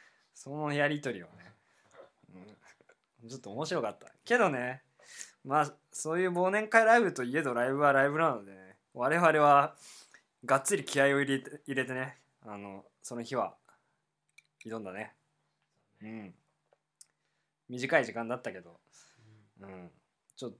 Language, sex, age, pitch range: Japanese, male, 20-39, 105-140 Hz